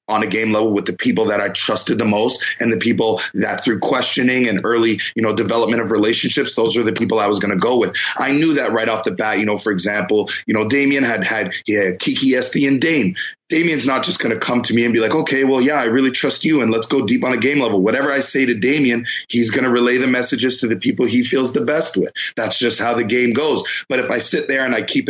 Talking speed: 275 wpm